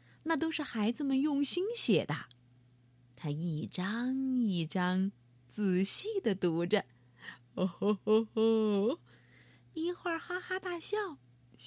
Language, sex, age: Chinese, female, 30-49